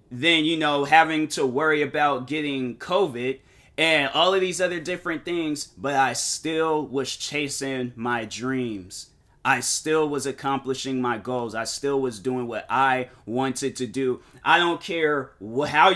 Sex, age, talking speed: male, 30-49, 160 wpm